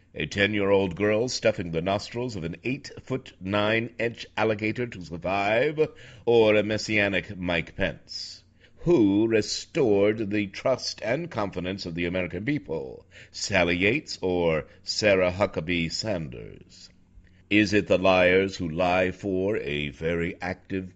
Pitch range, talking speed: 85-105 Hz, 125 wpm